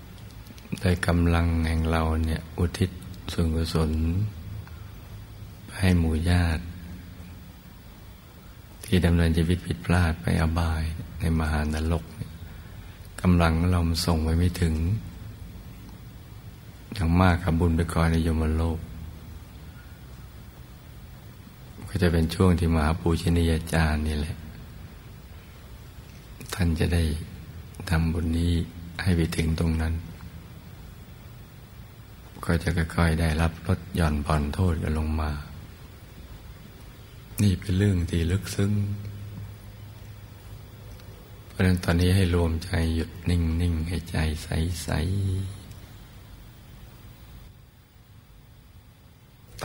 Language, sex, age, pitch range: Thai, male, 60-79, 80-100 Hz